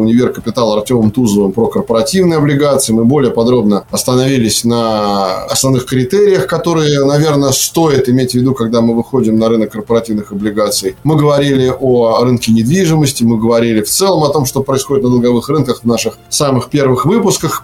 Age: 20-39